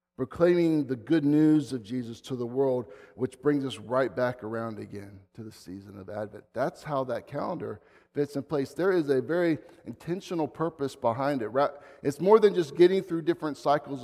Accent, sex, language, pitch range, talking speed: American, male, English, 105-150 Hz, 190 wpm